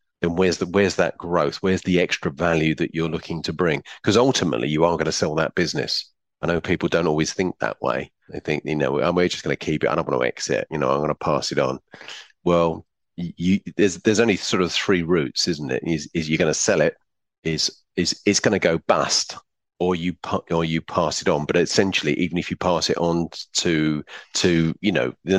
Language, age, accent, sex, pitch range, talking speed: English, 40-59, British, male, 80-95 Hz, 240 wpm